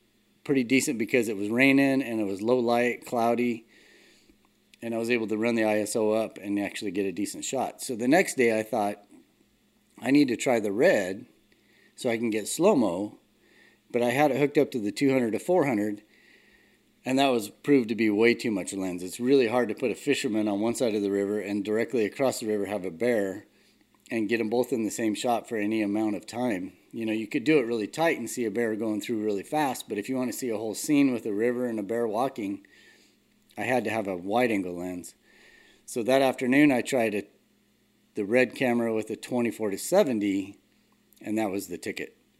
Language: English